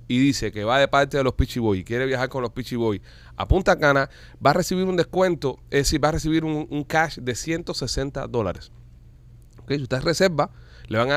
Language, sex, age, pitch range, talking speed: Spanish, male, 30-49, 120-140 Hz, 215 wpm